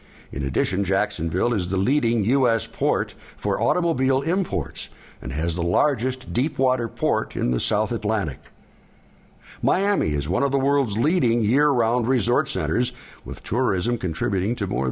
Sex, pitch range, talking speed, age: male, 85-125 Hz, 145 wpm, 60-79